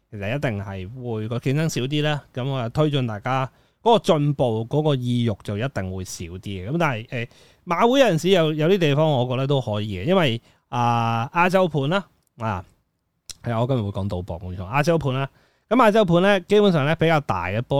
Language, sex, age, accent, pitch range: Chinese, male, 20-39, native, 110-160 Hz